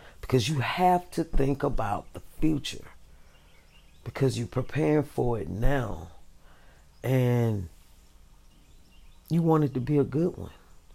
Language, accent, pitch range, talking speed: English, American, 100-160 Hz, 125 wpm